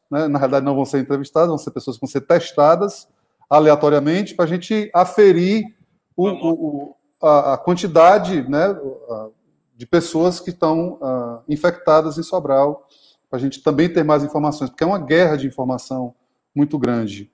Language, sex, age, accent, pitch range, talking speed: Portuguese, male, 20-39, Brazilian, 145-205 Hz, 155 wpm